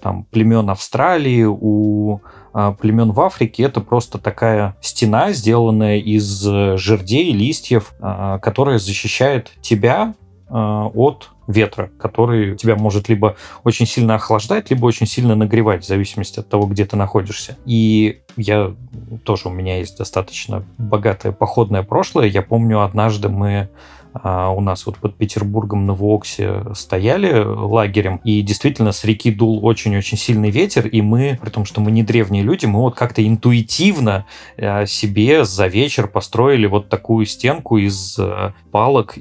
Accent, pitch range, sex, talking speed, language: native, 100-115 Hz, male, 140 wpm, Russian